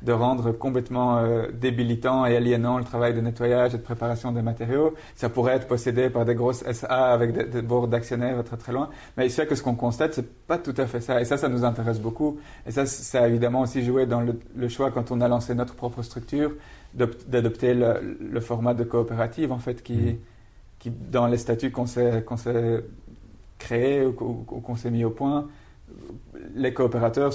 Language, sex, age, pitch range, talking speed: French, male, 40-59, 115-130 Hz, 215 wpm